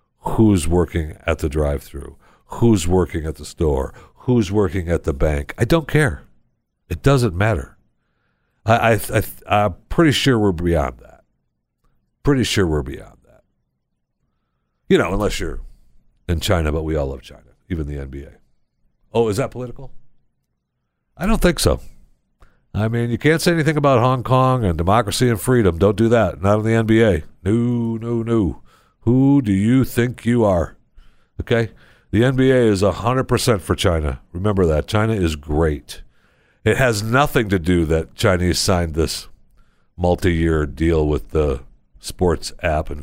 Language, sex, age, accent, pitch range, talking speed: English, male, 60-79, American, 80-120 Hz, 155 wpm